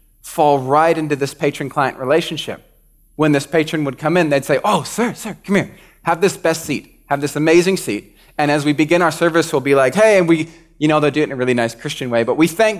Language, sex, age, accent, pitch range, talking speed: English, male, 30-49, American, 120-155 Hz, 250 wpm